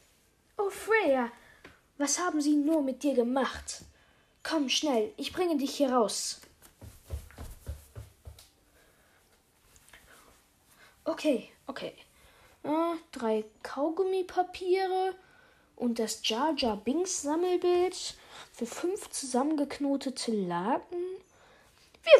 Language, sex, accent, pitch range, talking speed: German, female, German, 235-335 Hz, 80 wpm